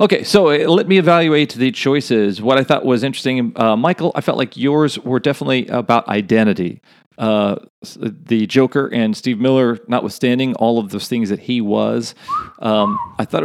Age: 40-59